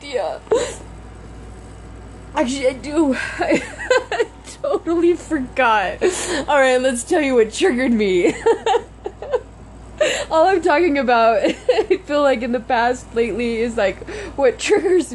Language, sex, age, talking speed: English, female, 20-39, 120 wpm